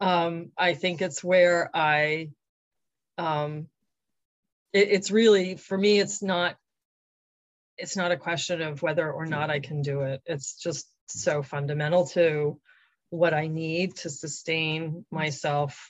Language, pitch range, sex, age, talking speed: English, 155-180 Hz, female, 40-59, 140 wpm